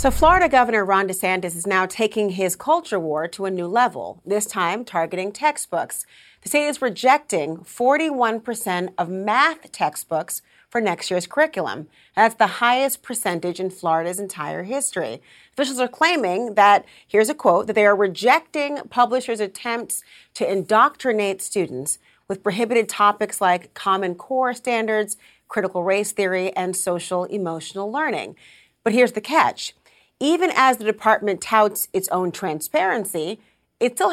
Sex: female